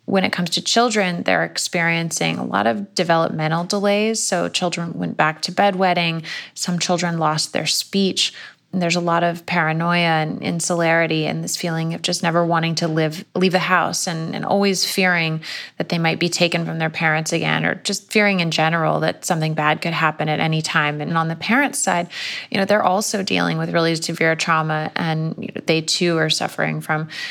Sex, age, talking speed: female, 20-39, 200 wpm